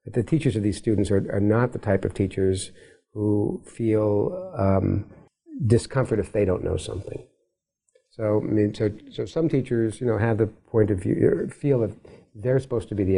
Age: 50-69